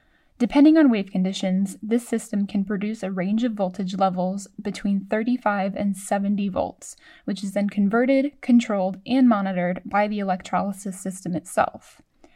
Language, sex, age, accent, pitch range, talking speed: English, female, 10-29, American, 190-230 Hz, 145 wpm